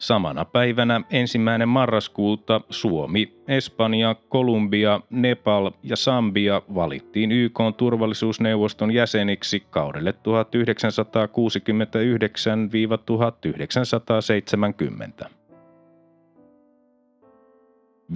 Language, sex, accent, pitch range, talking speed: Finnish, male, native, 110-135 Hz, 55 wpm